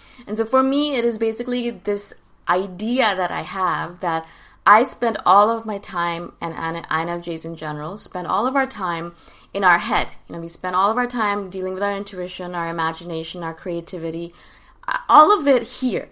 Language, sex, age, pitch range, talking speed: English, female, 20-39, 165-215 Hz, 195 wpm